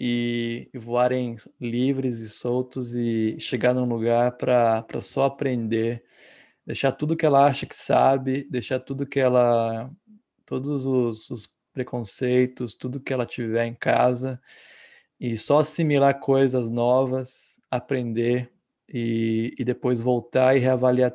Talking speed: 130 wpm